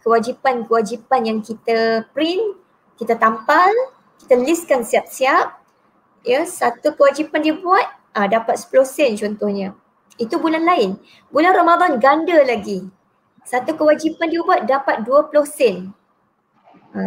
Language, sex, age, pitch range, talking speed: Malay, male, 20-39, 225-295 Hz, 115 wpm